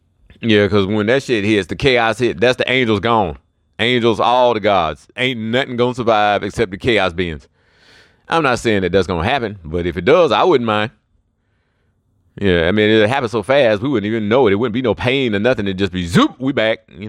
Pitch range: 95-110 Hz